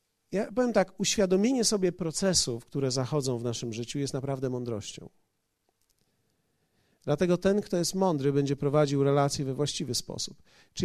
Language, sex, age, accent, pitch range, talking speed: Polish, male, 40-59, native, 145-175 Hz, 145 wpm